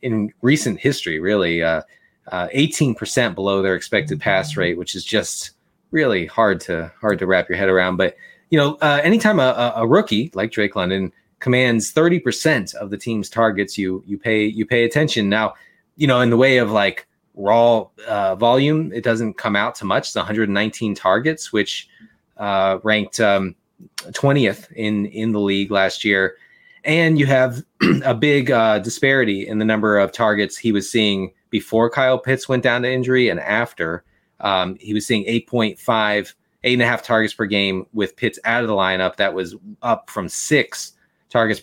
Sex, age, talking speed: male, 20-39, 185 wpm